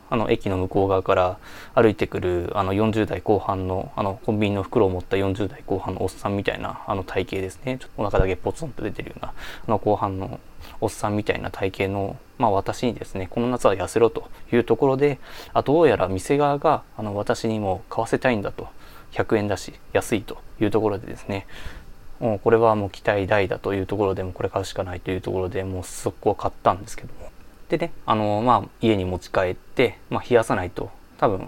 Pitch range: 95-115 Hz